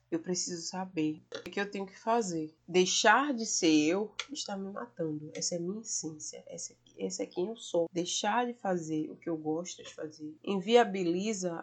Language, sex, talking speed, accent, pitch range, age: Italian, female, 185 wpm, Brazilian, 165-205 Hz, 20-39